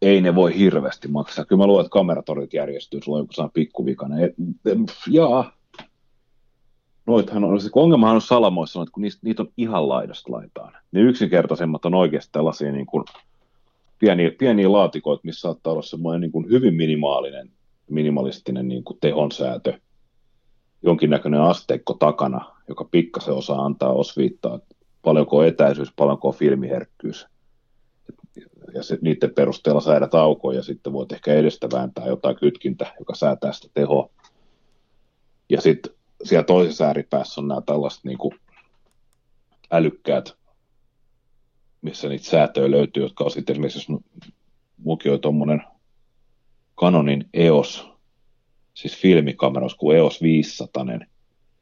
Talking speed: 125 wpm